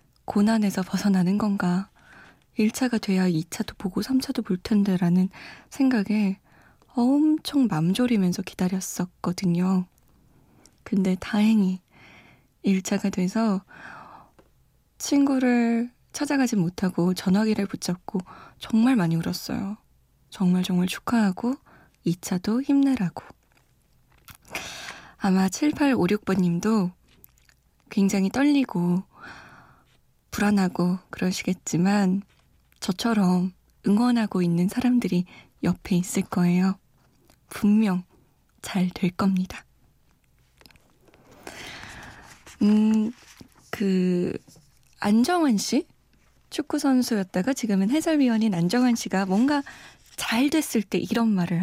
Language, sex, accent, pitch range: Korean, female, native, 185-245 Hz